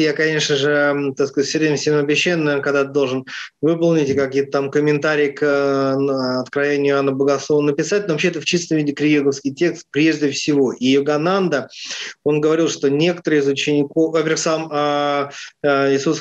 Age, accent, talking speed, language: 20-39, native, 155 wpm, Russian